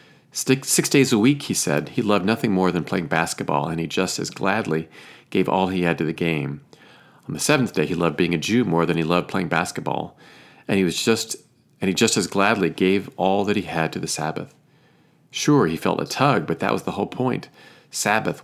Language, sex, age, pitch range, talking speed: English, male, 40-59, 85-125 Hz, 225 wpm